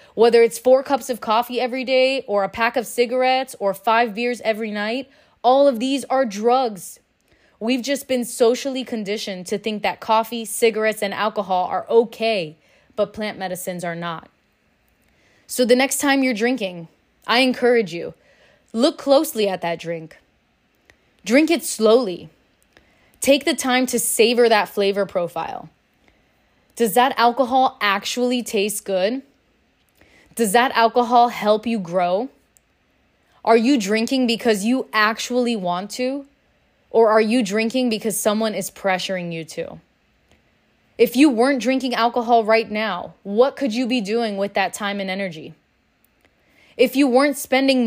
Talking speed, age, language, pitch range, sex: 150 wpm, 20-39, English, 205-250 Hz, female